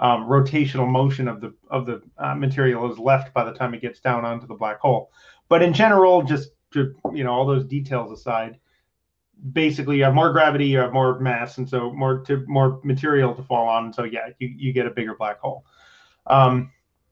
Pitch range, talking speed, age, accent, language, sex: 125-155 Hz, 210 wpm, 30-49, American, English, male